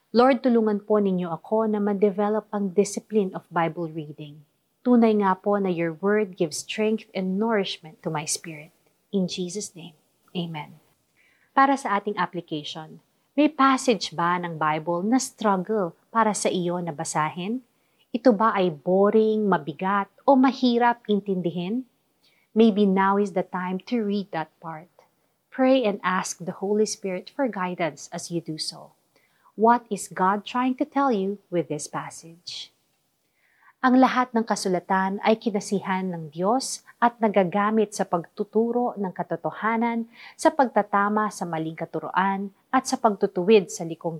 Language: Filipino